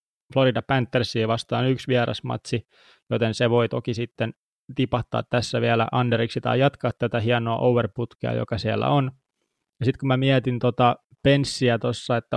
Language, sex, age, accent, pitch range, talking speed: Finnish, male, 20-39, native, 115-125 Hz, 150 wpm